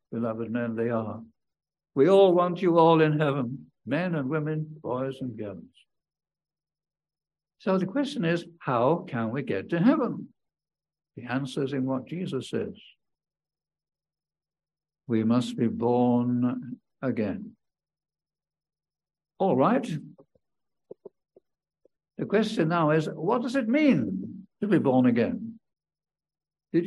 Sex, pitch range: male, 130-190 Hz